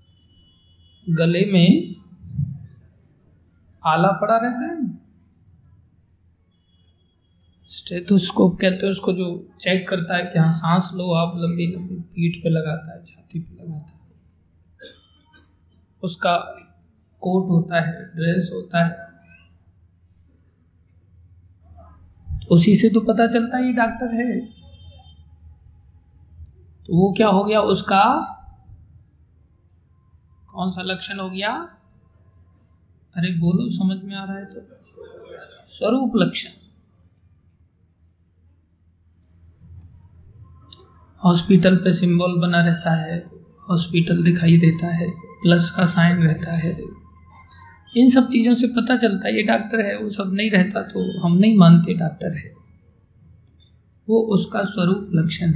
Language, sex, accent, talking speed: Hindi, male, native, 110 wpm